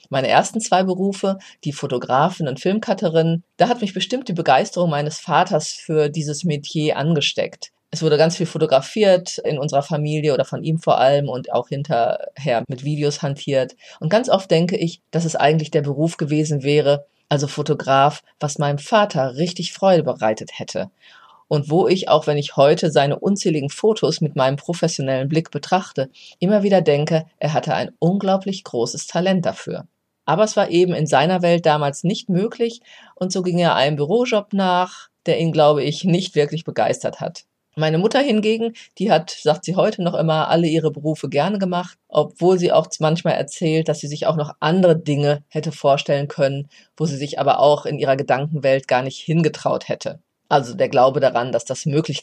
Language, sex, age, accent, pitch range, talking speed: German, female, 30-49, German, 145-180 Hz, 185 wpm